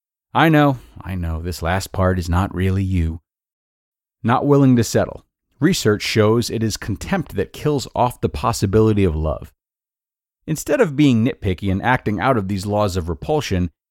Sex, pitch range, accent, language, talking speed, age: male, 90-120 Hz, American, English, 170 wpm, 30-49